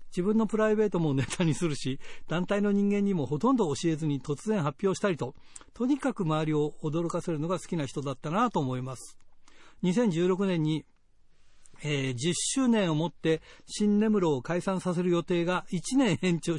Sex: male